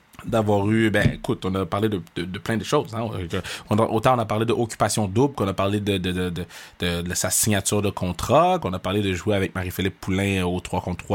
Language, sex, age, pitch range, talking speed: French, male, 20-39, 95-115 Hz, 255 wpm